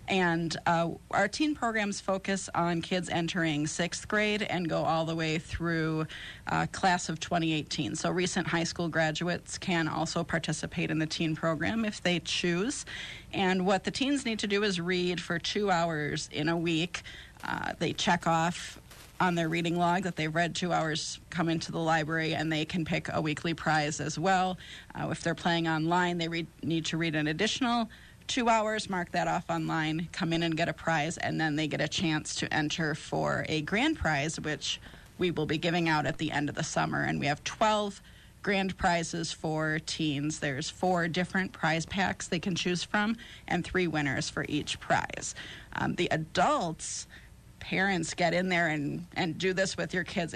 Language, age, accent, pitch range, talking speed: English, 40-59, American, 160-185 Hz, 195 wpm